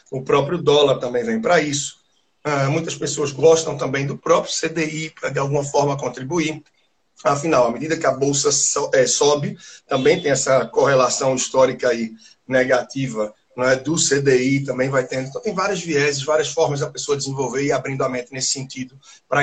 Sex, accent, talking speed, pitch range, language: male, Brazilian, 170 wpm, 140-200 Hz, Portuguese